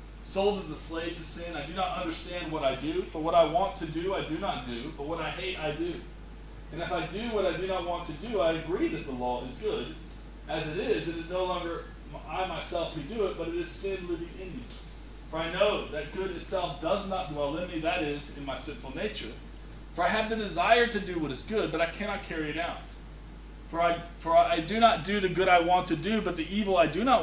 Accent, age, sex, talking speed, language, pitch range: American, 30-49, male, 260 wpm, English, 155-185 Hz